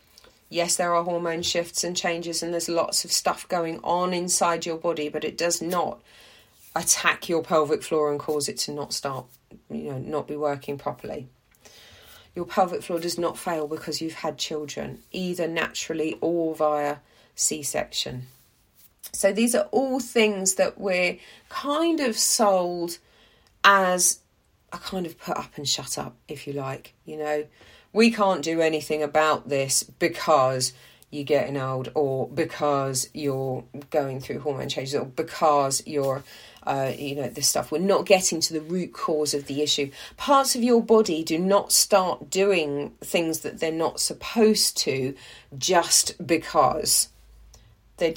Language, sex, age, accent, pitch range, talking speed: English, female, 40-59, British, 145-175 Hz, 160 wpm